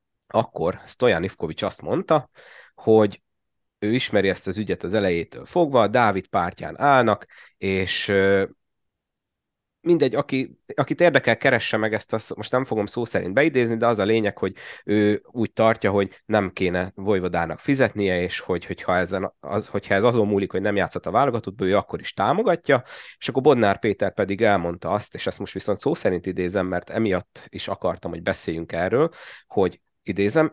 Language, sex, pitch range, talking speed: Hungarian, male, 90-110 Hz, 170 wpm